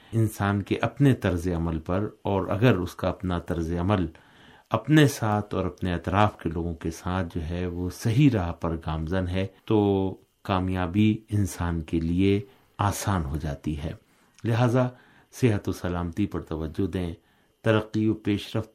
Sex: male